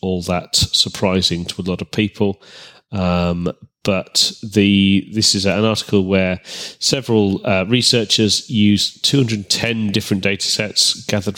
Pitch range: 95-115 Hz